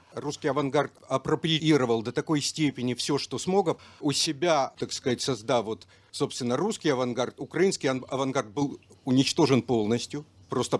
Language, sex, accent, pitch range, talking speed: Russian, male, native, 115-150 Hz, 135 wpm